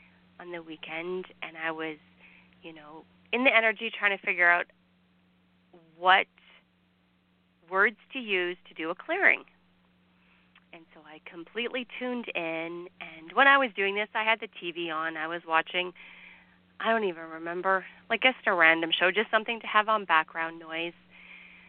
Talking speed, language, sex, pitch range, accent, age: 165 wpm, English, female, 160-205 Hz, American, 30-49